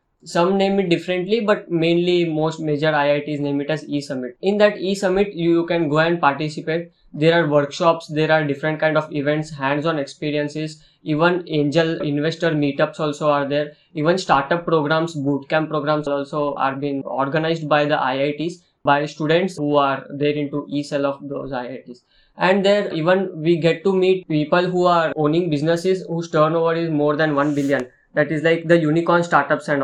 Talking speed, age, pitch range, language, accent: 175 wpm, 20-39, 145-175 Hz, English, Indian